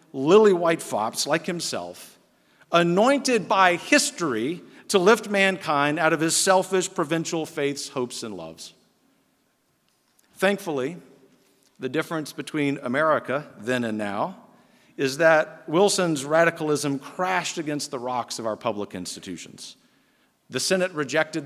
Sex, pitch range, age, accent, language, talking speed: male, 130-175 Hz, 50-69, American, English, 120 wpm